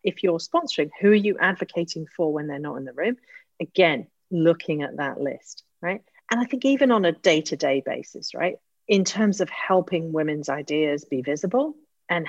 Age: 40-59